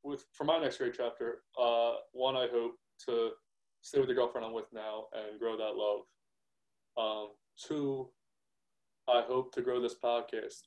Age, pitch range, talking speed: 20-39, 115-135 Hz, 170 wpm